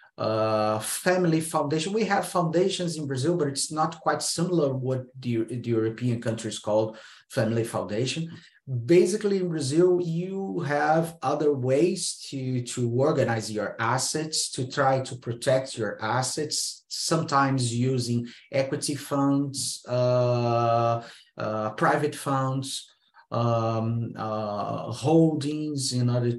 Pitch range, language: 115-140 Hz, English